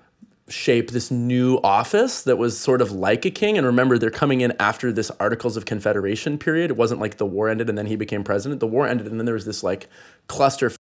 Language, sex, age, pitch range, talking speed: English, male, 20-39, 105-125 Hz, 240 wpm